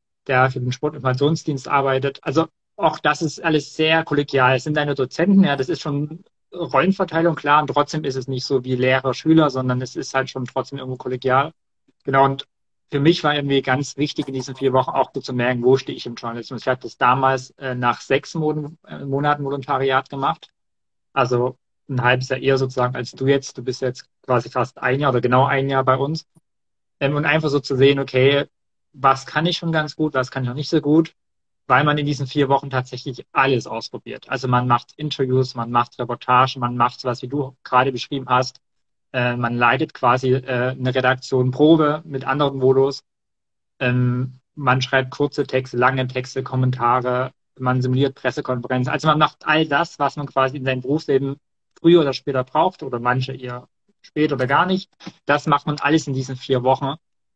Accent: German